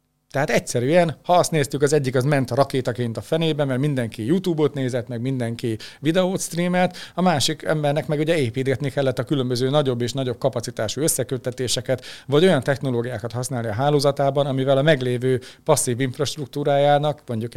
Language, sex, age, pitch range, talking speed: Hungarian, male, 40-59, 125-145 Hz, 155 wpm